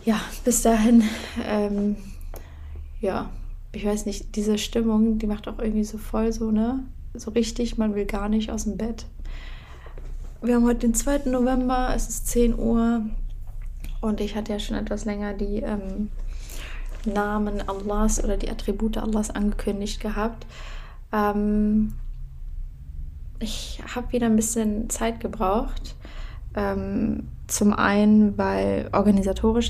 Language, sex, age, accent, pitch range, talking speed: German, female, 20-39, German, 195-225 Hz, 135 wpm